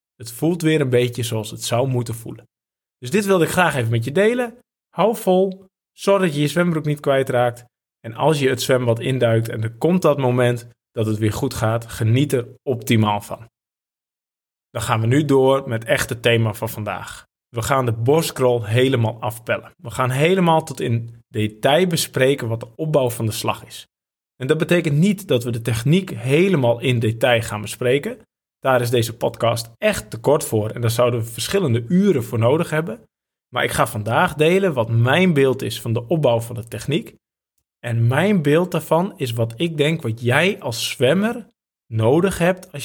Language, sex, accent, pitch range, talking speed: Dutch, male, Dutch, 115-160 Hz, 195 wpm